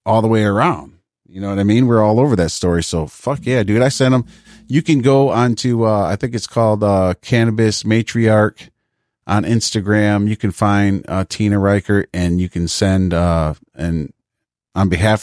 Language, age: English, 40-59